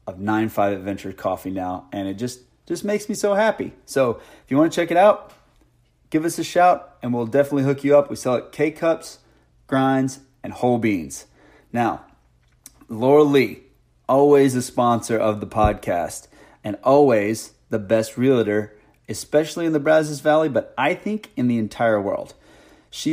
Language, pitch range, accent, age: English, 110-135 Hz, American, 30-49